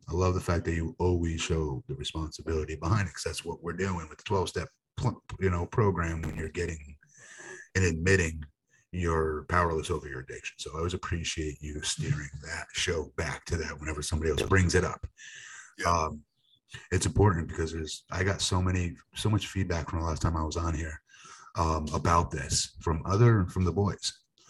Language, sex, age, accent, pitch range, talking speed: English, male, 30-49, American, 80-95 Hz, 190 wpm